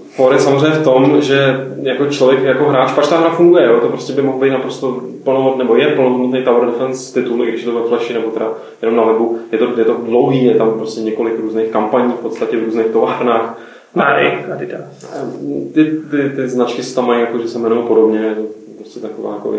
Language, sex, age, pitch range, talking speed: Czech, male, 20-39, 115-135 Hz, 200 wpm